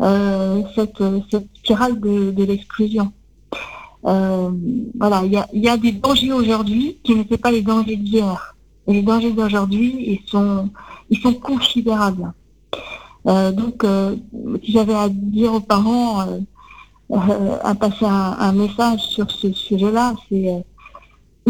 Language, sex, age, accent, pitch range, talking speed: French, female, 50-69, French, 200-230 Hz, 145 wpm